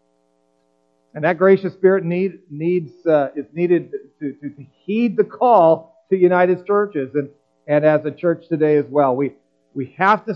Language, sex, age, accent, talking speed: English, male, 50-69, American, 180 wpm